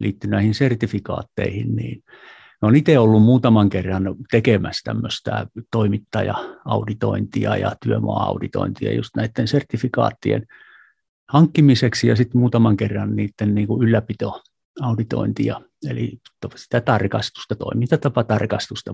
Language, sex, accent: Finnish, male, native